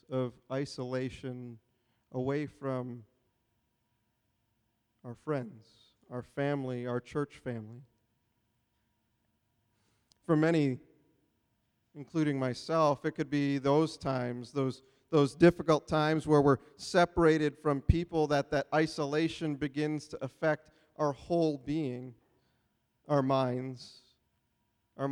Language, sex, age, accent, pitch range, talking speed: English, male, 40-59, American, 125-145 Hz, 100 wpm